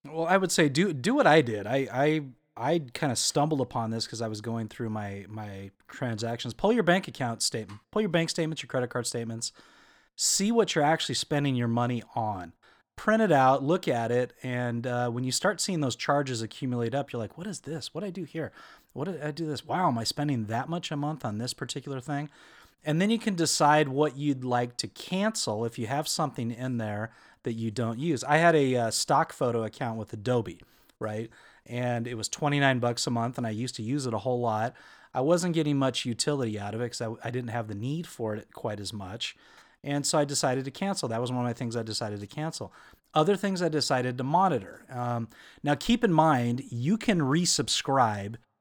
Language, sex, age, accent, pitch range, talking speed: English, male, 30-49, American, 115-155 Hz, 230 wpm